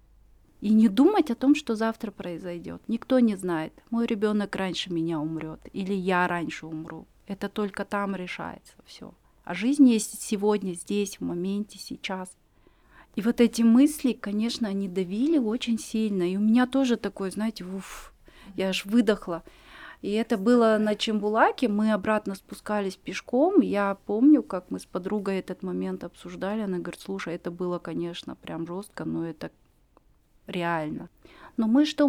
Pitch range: 180-220 Hz